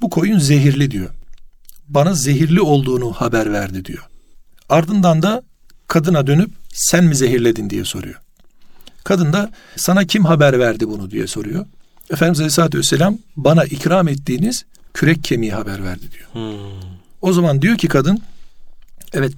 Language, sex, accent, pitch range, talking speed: Turkish, male, native, 130-175 Hz, 140 wpm